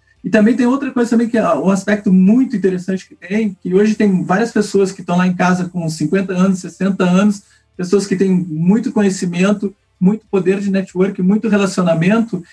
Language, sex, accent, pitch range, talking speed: Portuguese, male, Brazilian, 175-205 Hz, 190 wpm